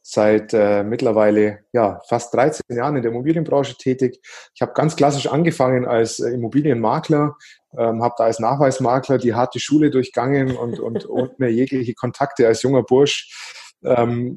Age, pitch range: 20-39, 115-130 Hz